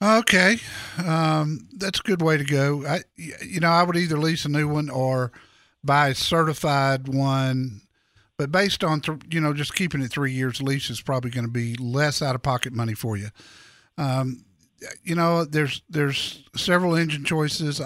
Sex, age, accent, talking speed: male, 50-69, American, 170 wpm